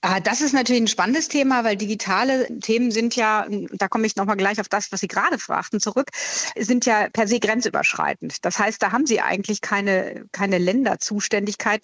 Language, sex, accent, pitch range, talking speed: German, female, German, 200-245 Hz, 190 wpm